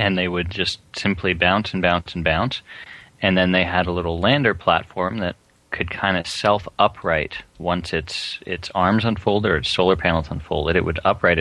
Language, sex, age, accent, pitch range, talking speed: English, male, 30-49, American, 85-100 Hz, 190 wpm